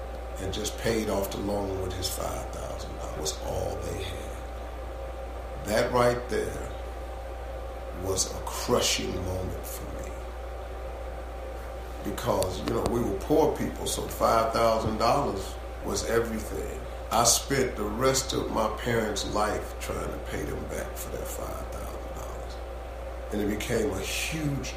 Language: English